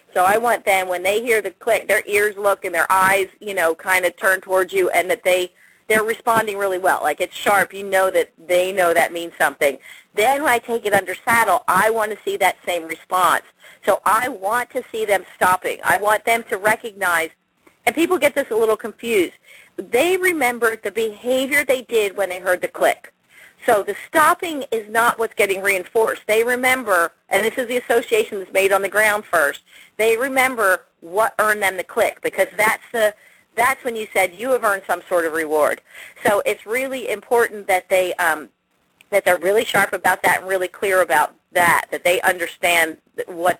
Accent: American